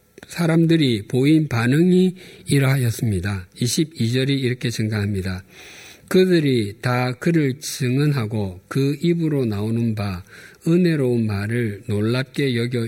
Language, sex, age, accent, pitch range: Korean, male, 50-69, native, 110-155 Hz